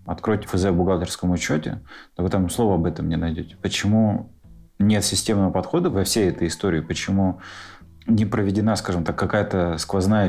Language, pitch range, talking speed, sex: Russian, 85-100 Hz, 165 wpm, male